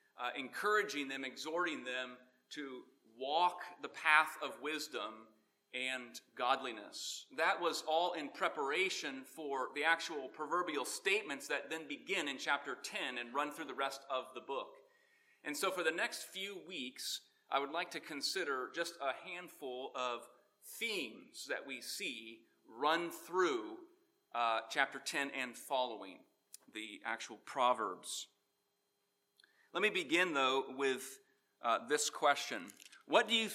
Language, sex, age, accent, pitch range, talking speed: English, male, 30-49, American, 130-180 Hz, 140 wpm